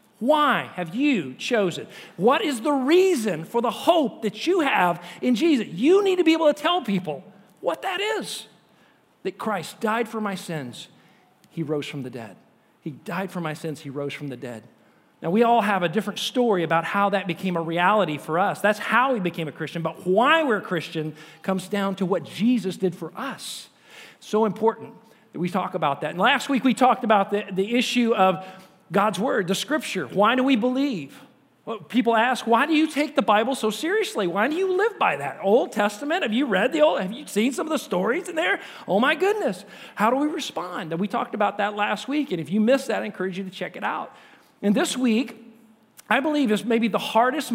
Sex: male